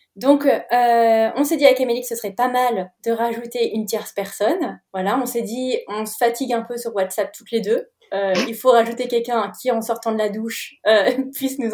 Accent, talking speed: French, 230 wpm